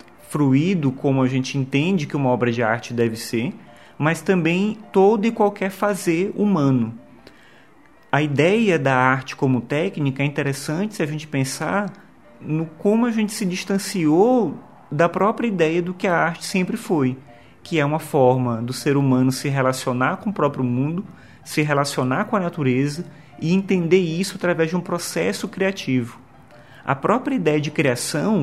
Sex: male